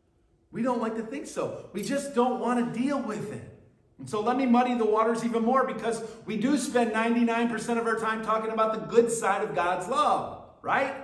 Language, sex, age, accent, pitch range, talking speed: English, male, 50-69, American, 160-230 Hz, 215 wpm